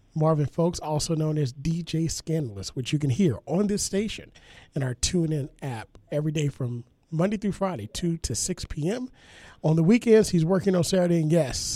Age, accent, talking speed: 40-59, American, 190 wpm